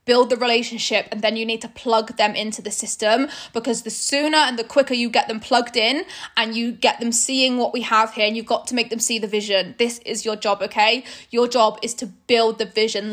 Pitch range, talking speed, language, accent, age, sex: 215-245 Hz, 245 wpm, English, British, 10-29, female